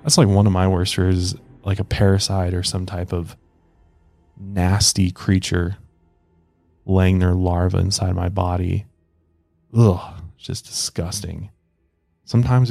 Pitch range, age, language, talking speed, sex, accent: 95-120 Hz, 20-39, English, 130 wpm, male, American